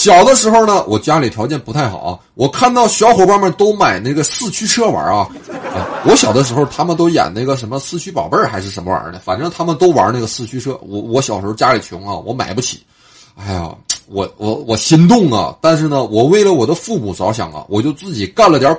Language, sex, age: Chinese, male, 30-49